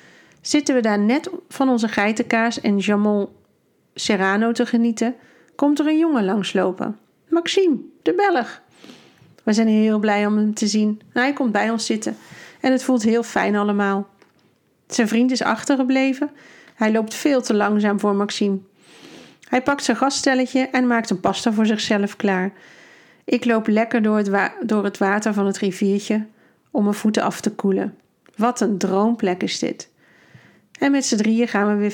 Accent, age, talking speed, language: Dutch, 40-59, 165 wpm, Dutch